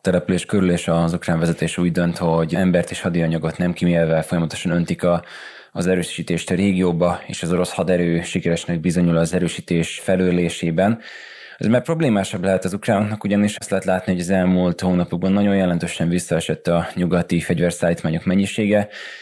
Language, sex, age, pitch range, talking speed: Hungarian, male, 20-39, 85-95 Hz, 160 wpm